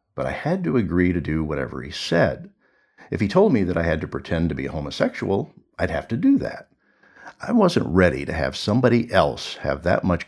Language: English